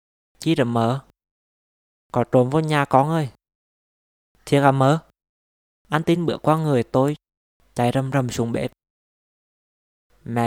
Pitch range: 115-140 Hz